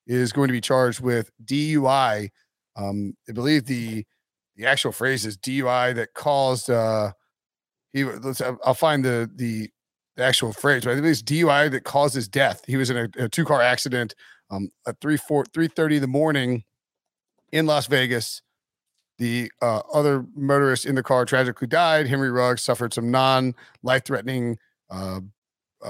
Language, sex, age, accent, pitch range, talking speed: English, male, 40-59, American, 125-155 Hz, 165 wpm